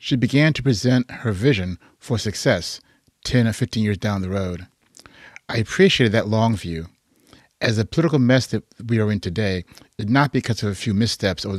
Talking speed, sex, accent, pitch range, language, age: 190 wpm, male, American, 95-120 Hz, English, 40-59